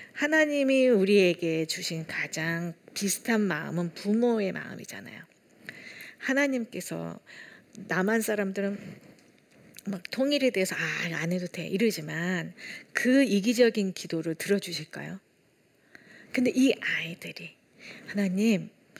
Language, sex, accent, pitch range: Korean, female, native, 180-245 Hz